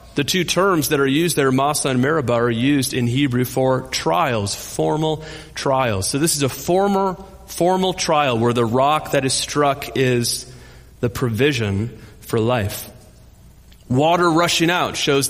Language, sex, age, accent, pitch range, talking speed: English, male, 40-59, American, 115-150 Hz, 155 wpm